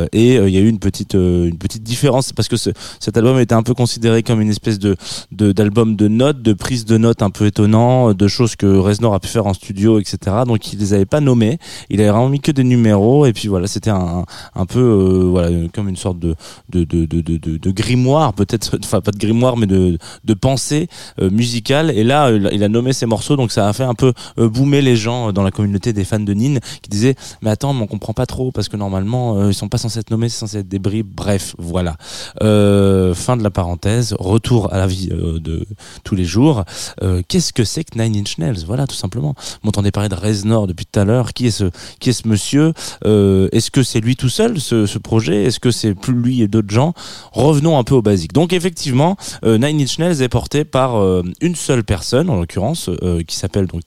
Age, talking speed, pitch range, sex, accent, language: 20-39, 250 wpm, 100-125 Hz, male, French, French